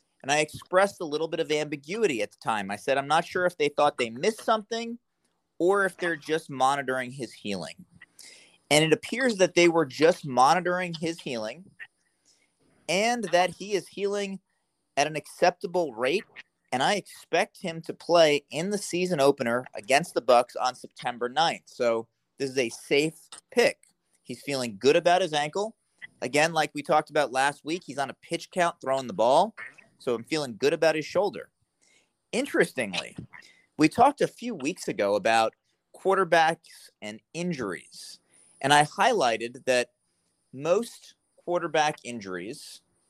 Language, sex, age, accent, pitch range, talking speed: English, male, 30-49, American, 135-180 Hz, 160 wpm